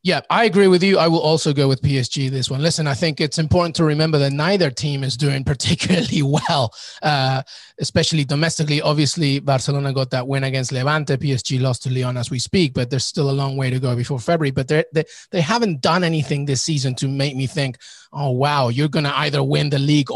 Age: 30-49